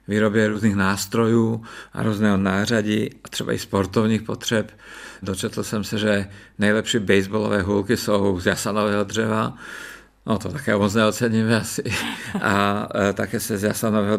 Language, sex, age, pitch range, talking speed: Czech, male, 50-69, 100-110 Hz, 145 wpm